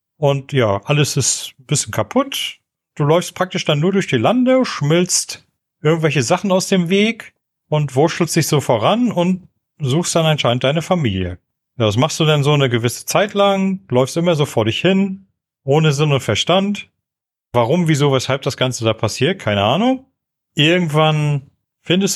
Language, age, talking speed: German, 40-59, 170 wpm